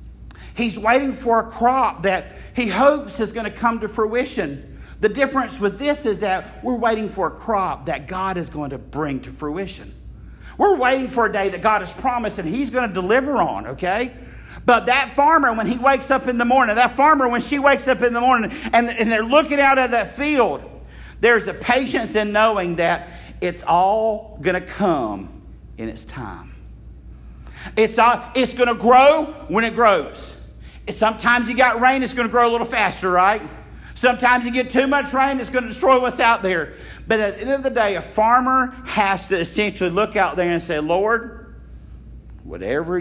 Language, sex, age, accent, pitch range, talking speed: English, male, 50-69, American, 160-245 Hz, 200 wpm